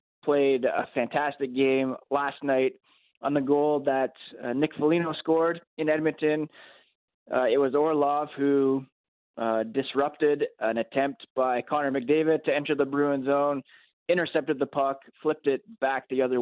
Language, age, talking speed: English, 20-39, 150 wpm